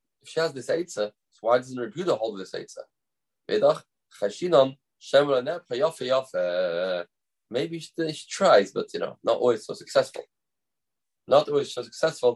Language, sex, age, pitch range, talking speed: English, male, 30-49, 120-170 Hz, 135 wpm